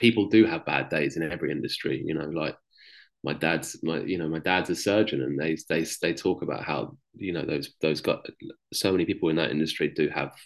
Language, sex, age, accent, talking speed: English, male, 20-39, British, 230 wpm